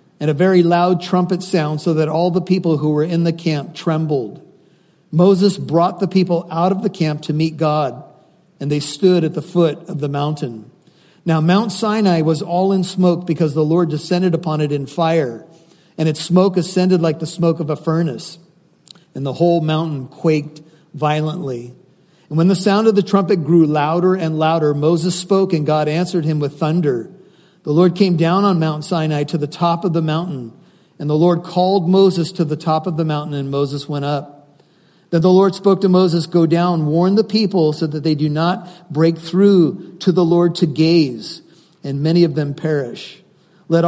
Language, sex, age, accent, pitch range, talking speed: English, male, 50-69, American, 155-180 Hz, 195 wpm